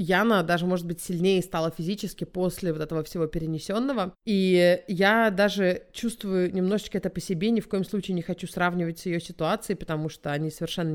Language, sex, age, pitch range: Russian, female, 30-49, 180-230 Hz